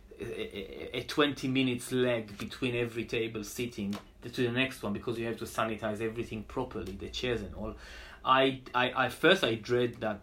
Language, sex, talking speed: English, male, 175 wpm